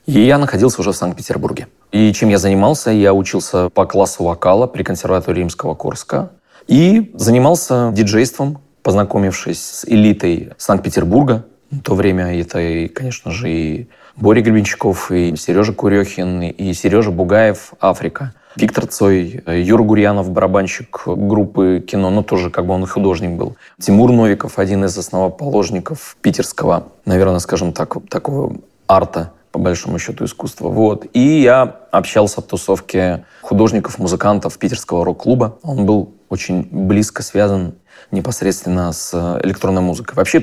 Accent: native